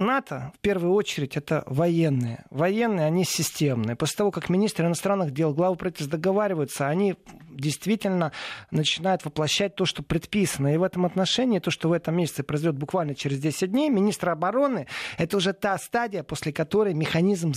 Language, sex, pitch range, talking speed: Russian, male, 150-200 Hz, 165 wpm